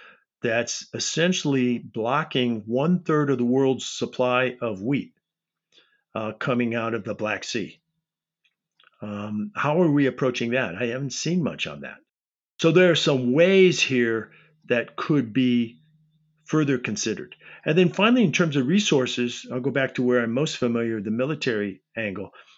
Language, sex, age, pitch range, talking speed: English, male, 50-69, 125-165 Hz, 155 wpm